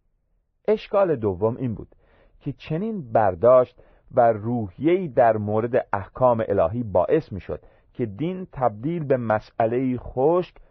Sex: male